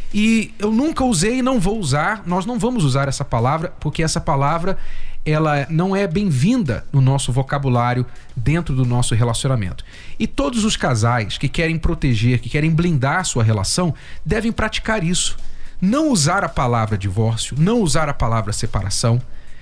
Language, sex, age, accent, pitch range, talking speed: Portuguese, male, 40-59, Brazilian, 125-185 Hz, 170 wpm